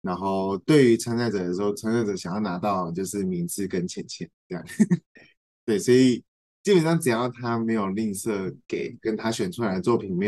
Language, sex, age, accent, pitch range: Chinese, male, 20-39, native, 95-125 Hz